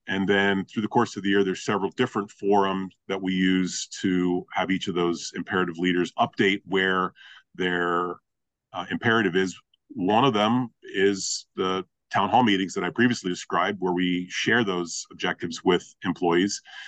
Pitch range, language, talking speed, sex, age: 90-100 Hz, English, 165 wpm, male, 40-59